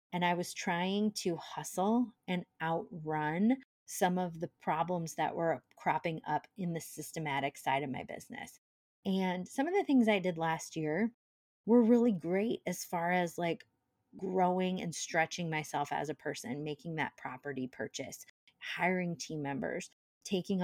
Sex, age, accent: female, 30-49, American